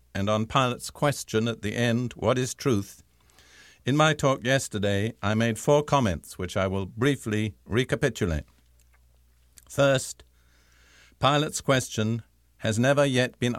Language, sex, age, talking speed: English, male, 50-69, 130 wpm